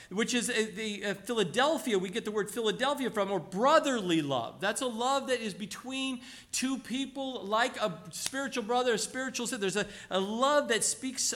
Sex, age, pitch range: male, 50-69, 195-255 Hz